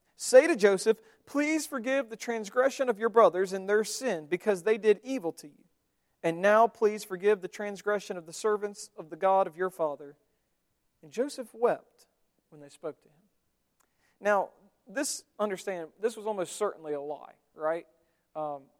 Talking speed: 170 wpm